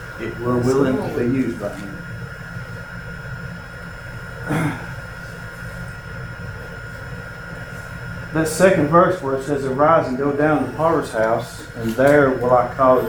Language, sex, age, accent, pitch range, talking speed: English, male, 50-69, American, 130-160 Hz, 125 wpm